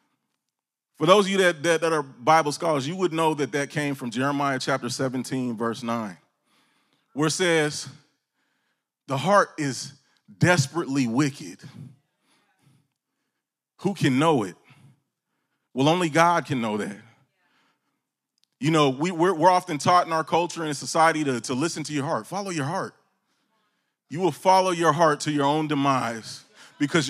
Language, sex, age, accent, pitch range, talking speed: English, male, 30-49, American, 135-170 Hz, 155 wpm